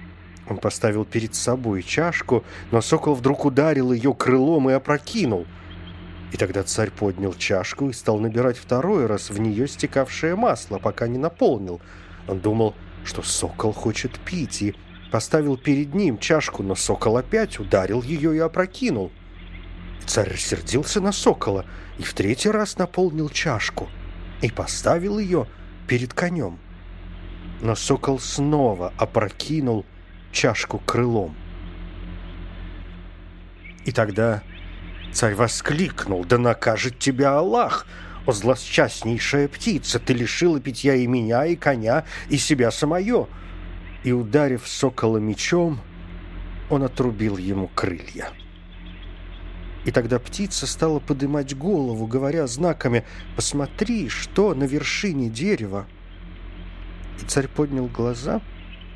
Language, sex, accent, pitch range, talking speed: Russian, male, native, 90-140 Hz, 115 wpm